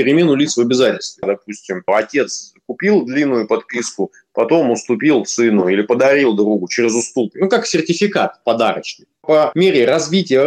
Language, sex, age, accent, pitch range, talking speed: Russian, male, 20-39, native, 115-170 Hz, 140 wpm